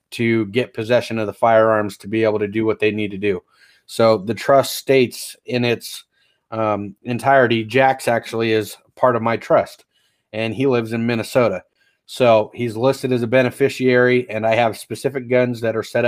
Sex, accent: male, American